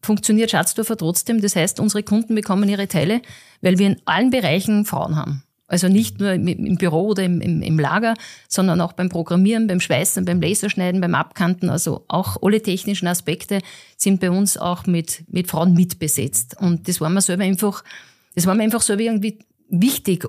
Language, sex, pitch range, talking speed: German, female, 175-215 Hz, 185 wpm